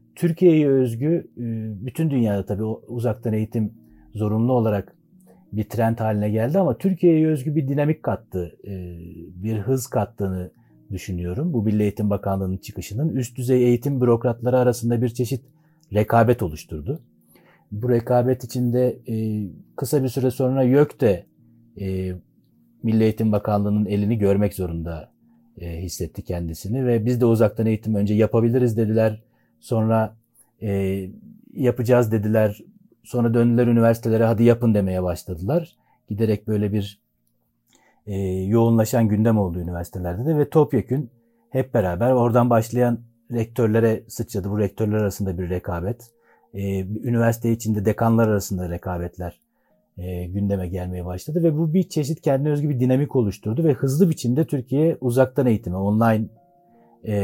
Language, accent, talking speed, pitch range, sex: Turkish, native, 130 wpm, 100-125 Hz, male